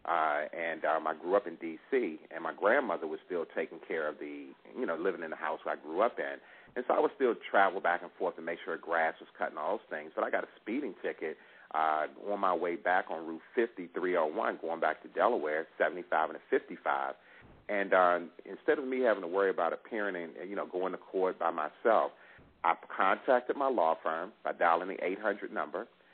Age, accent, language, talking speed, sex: 40-59, American, English, 215 wpm, male